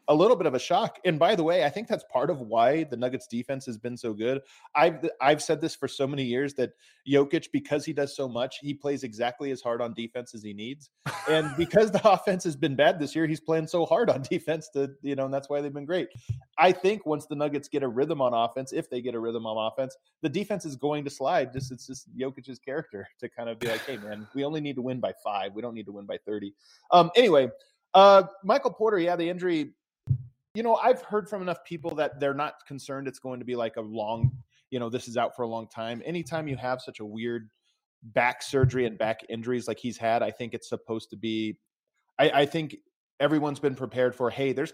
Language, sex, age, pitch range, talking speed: English, male, 30-49, 120-155 Hz, 250 wpm